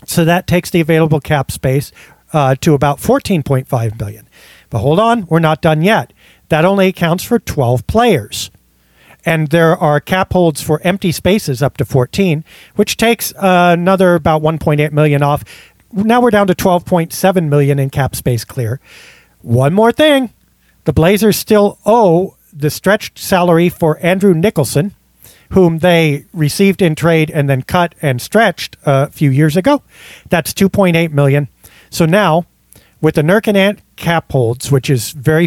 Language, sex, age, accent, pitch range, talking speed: English, male, 40-59, American, 140-190 Hz, 165 wpm